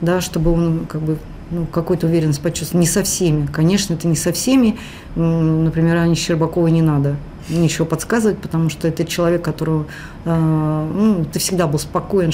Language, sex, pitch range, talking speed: Russian, female, 155-175 Hz, 165 wpm